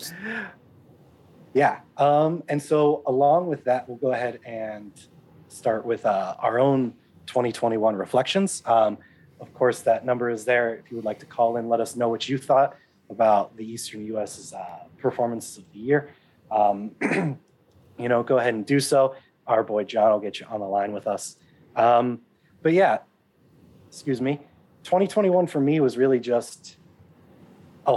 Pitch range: 110-135 Hz